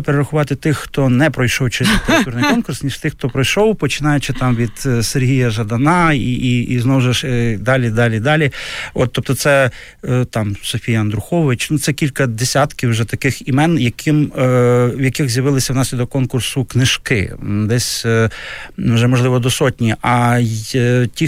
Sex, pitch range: male, 120-145 Hz